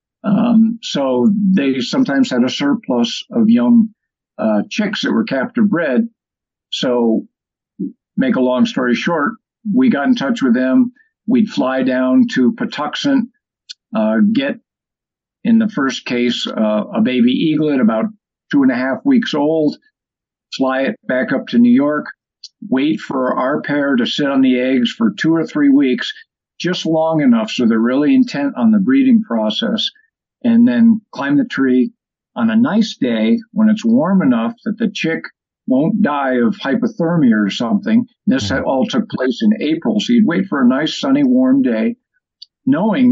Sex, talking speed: male, 165 wpm